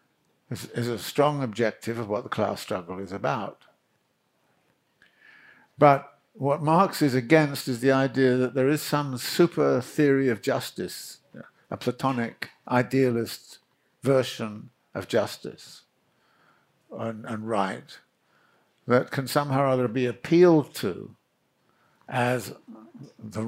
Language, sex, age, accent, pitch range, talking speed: English, male, 60-79, British, 105-130 Hz, 120 wpm